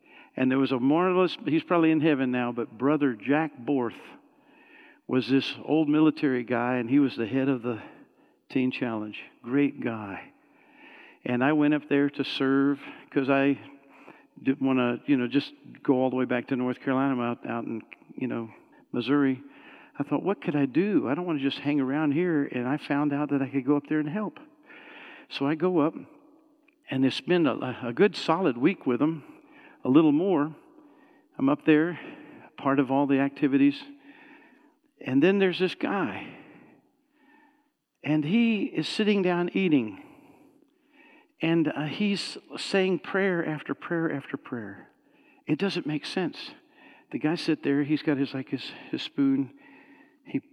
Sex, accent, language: male, American, English